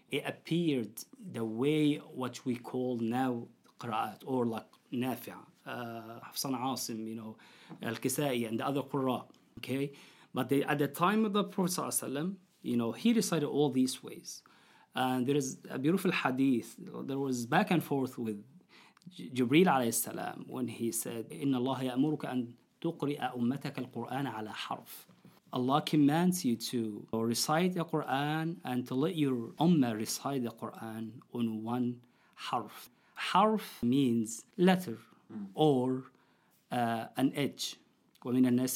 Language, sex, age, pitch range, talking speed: English, male, 40-59, 120-150 Hz, 135 wpm